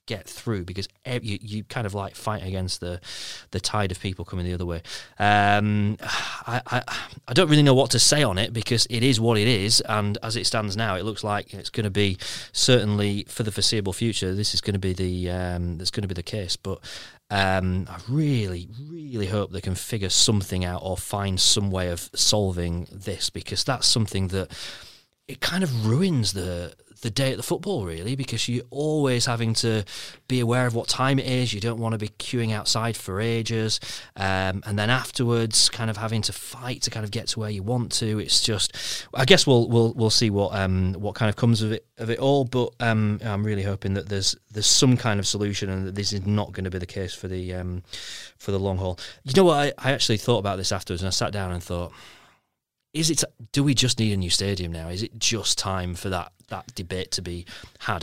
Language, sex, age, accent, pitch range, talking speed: English, male, 30-49, British, 95-120 Hz, 230 wpm